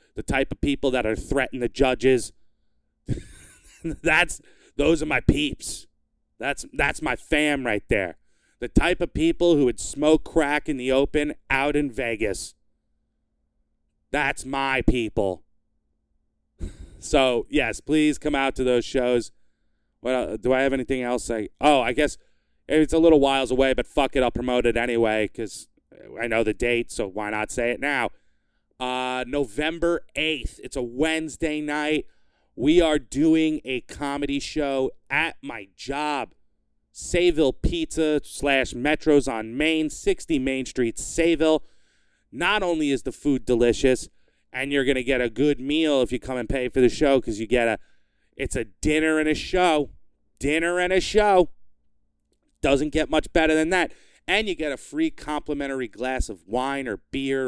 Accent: American